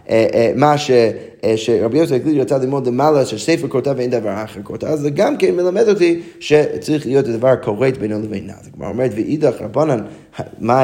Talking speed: 165 wpm